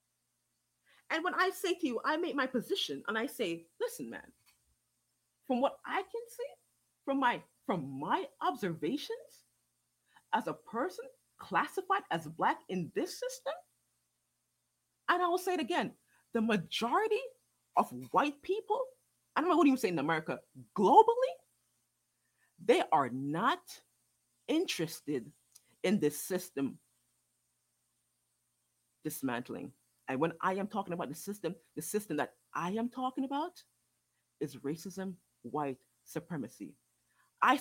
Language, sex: English, female